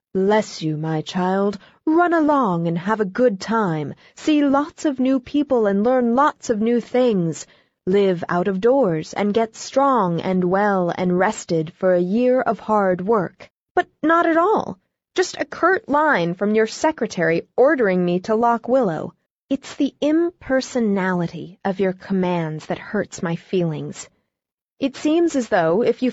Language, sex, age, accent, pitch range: Chinese, female, 30-49, American, 185-265 Hz